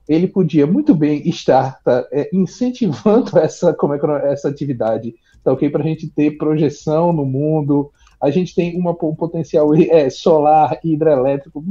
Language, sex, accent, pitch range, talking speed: Portuguese, male, Brazilian, 135-185 Hz, 165 wpm